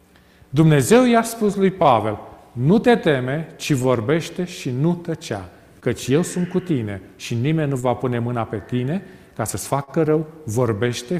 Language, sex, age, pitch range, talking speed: Romanian, male, 40-59, 120-180 Hz, 165 wpm